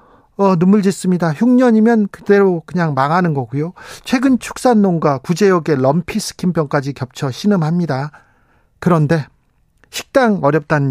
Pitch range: 145-200 Hz